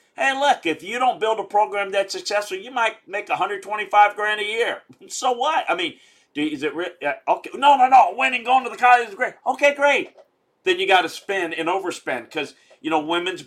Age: 40-59